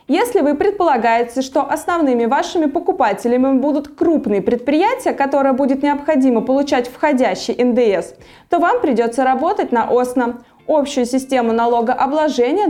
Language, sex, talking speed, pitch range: Russian, female, 120 wpm, 220-305 Hz